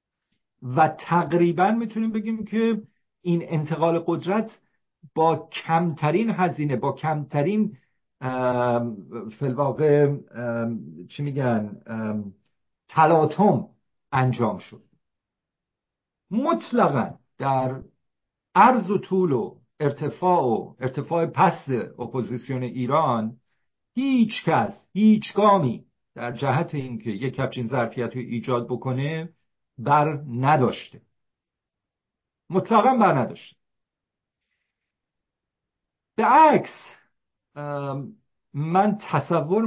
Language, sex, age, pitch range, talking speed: Persian, male, 50-69, 120-180 Hz, 80 wpm